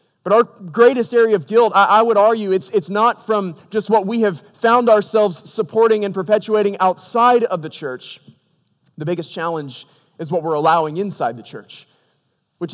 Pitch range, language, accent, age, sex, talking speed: 155-205 Hz, English, American, 30-49, male, 180 wpm